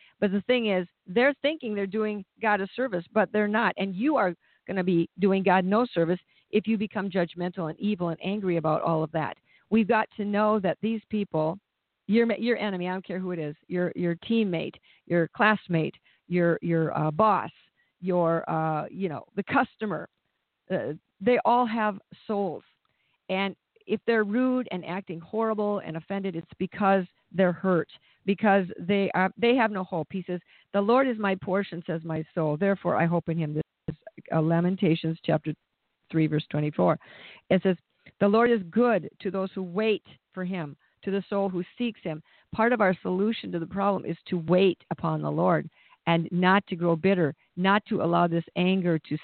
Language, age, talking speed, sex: English, 50-69, 190 wpm, female